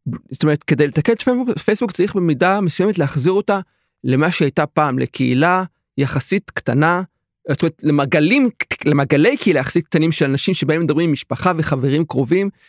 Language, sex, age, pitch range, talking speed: Hebrew, male, 40-59, 135-185 Hz, 135 wpm